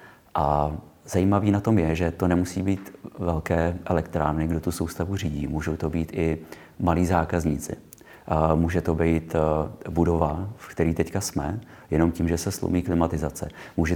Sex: male